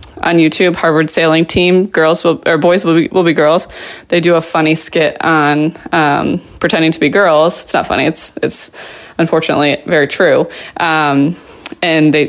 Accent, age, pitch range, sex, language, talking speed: American, 20-39, 160-200 Hz, female, English, 175 wpm